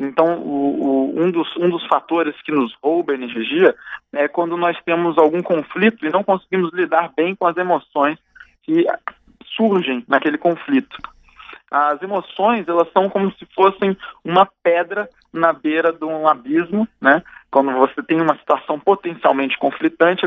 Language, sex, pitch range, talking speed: Portuguese, male, 155-190 Hz, 145 wpm